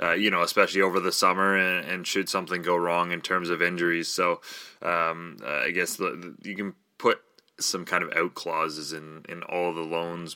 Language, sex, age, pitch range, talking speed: English, male, 20-39, 85-95 Hz, 215 wpm